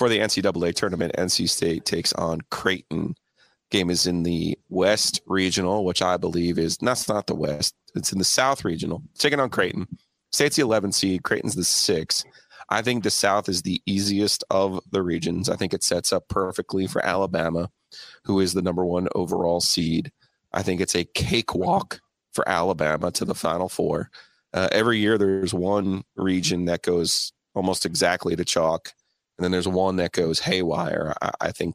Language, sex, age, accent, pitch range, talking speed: English, male, 30-49, American, 85-100 Hz, 185 wpm